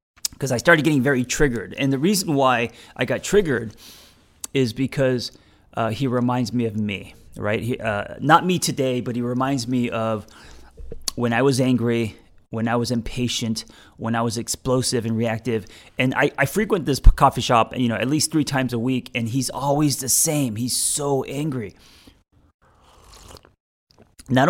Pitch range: 115-140 Hz